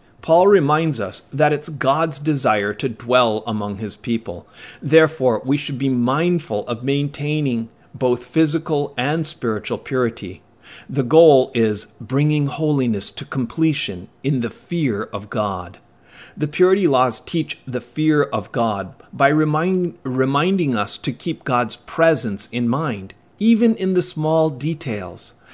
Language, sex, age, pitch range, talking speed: English, male, 40-59, 115-155 Hz, 135 wpm